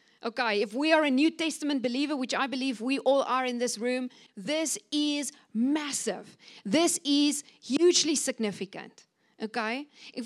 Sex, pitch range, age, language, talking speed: female, 230-310 Hz, 40-59, English, 150 wpm